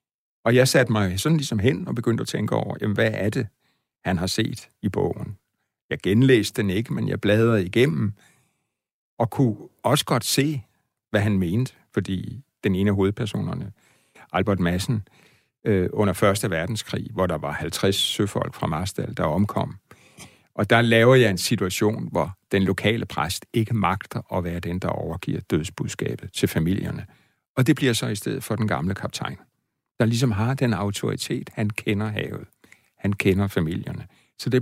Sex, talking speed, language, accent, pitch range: male, 175 wpm, Danish, native, 95-120 Hz